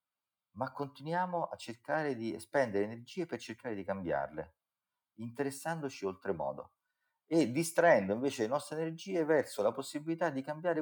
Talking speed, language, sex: 135 wpm, Italian, male